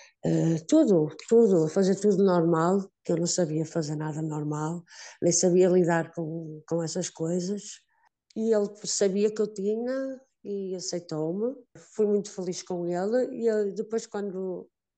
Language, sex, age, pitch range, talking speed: Portuguese, female, 50-69, 160-205 Hz, 150 wpm